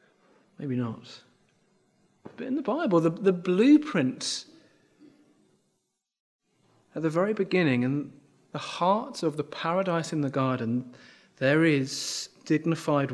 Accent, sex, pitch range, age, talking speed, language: British, male, 135-185 Hz, 30-49, 115 wpm, English